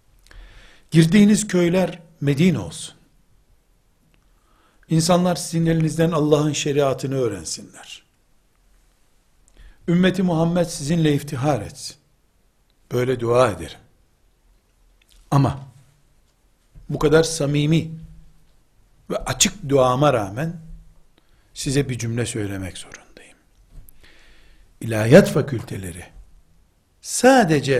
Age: 60-79